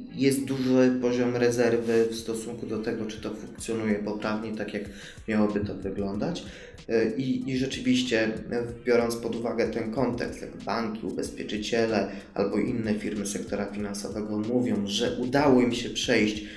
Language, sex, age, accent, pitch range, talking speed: Polish, male, 20-39, native, 110-125 Hz, 140 wpm